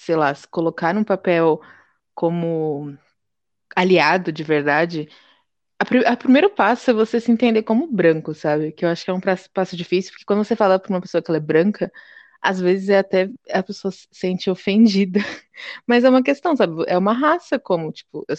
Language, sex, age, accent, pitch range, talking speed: English, female, 20-39, Brazilian, 170-230 Hz, 195 wpm